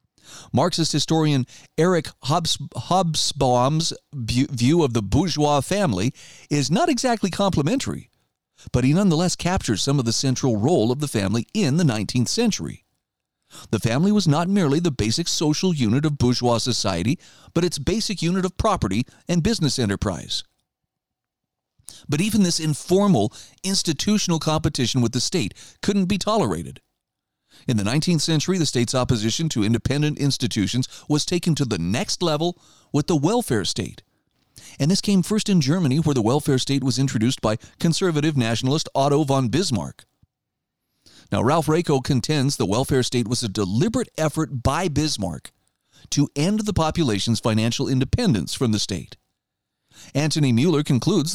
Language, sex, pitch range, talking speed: English, male, 120-165 Hz, 145 wpm